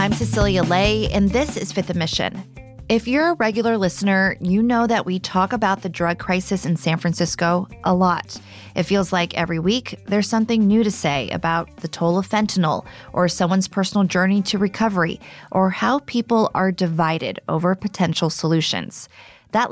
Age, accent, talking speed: 30-49, American, 175 wpm